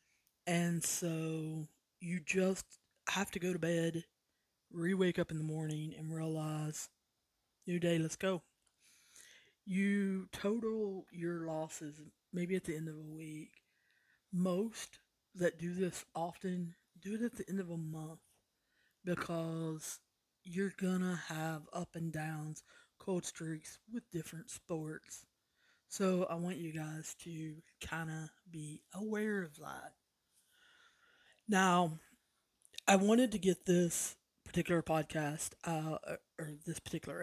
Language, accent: English, American